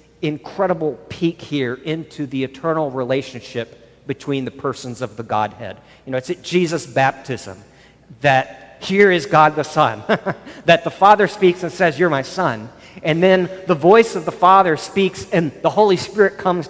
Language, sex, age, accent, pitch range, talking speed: English, male, 50-69, American, 155-215 Hz, 170 wpm